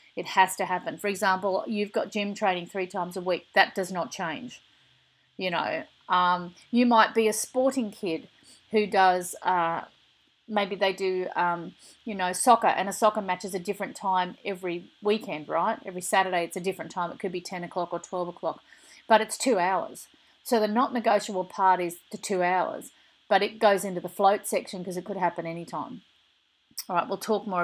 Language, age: English, 40-59